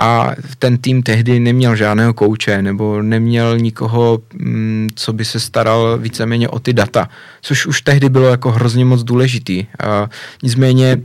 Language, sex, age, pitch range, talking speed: Czech, male, 20-39, 120-130 Hz, 150 wpm